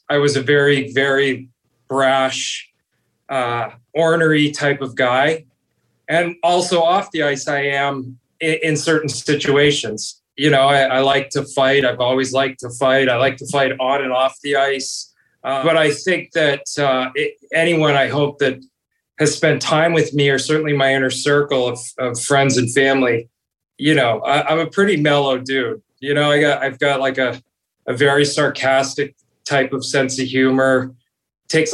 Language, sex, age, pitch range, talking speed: English, male, 30-49, 135-155 Hz, 180 wpm